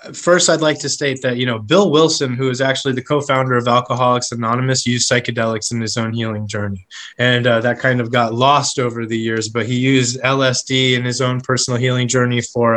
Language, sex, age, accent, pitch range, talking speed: English, male, 20-39, American, 120-135 Hz, 215 wpm